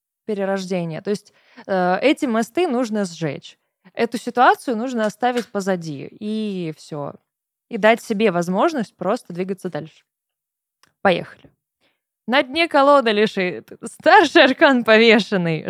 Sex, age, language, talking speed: female, 20-39, Russian, 115 wpm